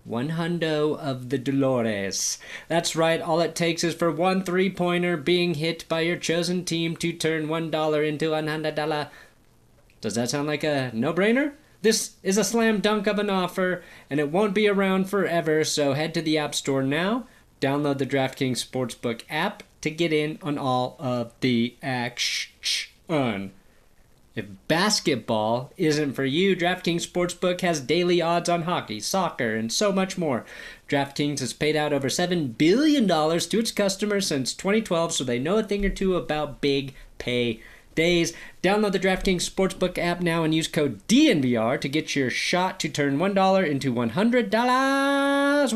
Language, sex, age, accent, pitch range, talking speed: English, male, 30-49, American, 150-210 Hz, 165 wpm